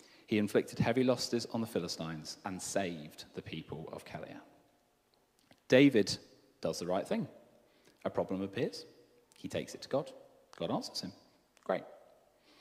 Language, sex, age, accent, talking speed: English, male, 30-49, British, 145 wpm